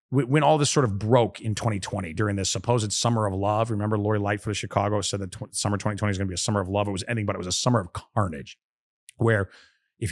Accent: American